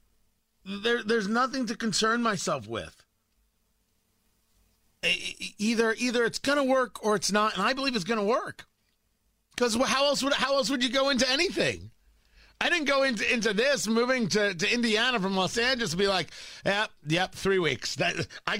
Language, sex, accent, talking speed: English, male, American, 180 wpm